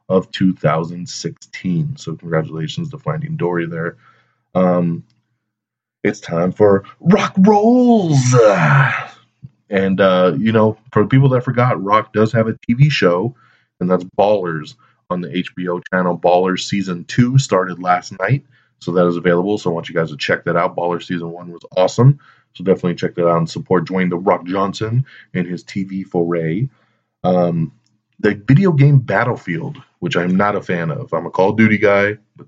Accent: American